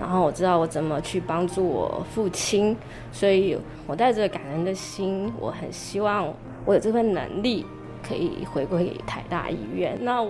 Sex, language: female, Chinese